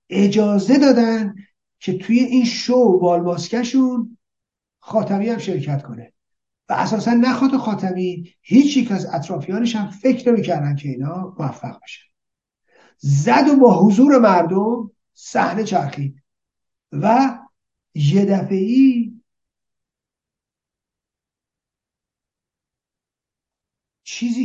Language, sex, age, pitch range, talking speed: Persian, male, 50-69, 160-225 Hz, 95 wpm